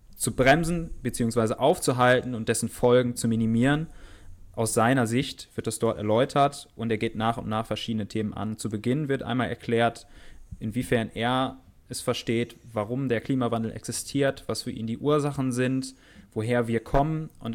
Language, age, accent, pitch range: German, 20-39, German, 105-125 Hz